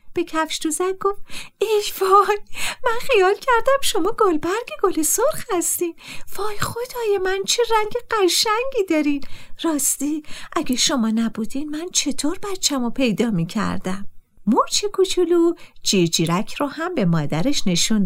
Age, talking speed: 50-69, 135 wpm